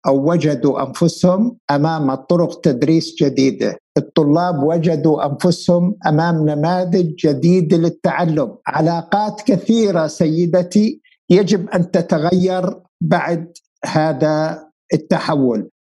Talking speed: 85 wpm